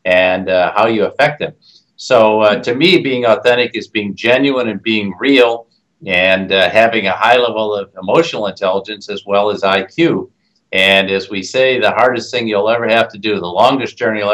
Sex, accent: male, American